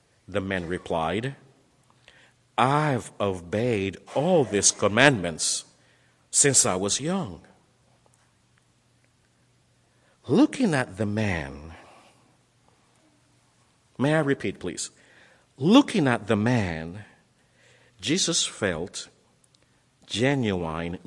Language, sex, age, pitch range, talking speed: English, male, 50-69, 110-170 Hz, 75 wpm